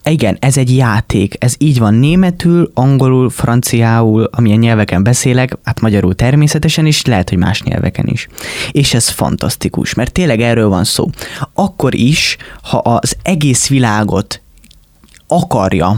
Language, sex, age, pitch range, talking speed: Hungarian, male, 20-39, 105-135 Hz, 140 wpm